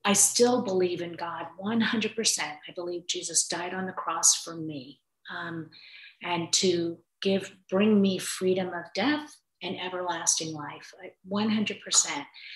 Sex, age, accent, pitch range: female, 40-59, American, 170-215 Hz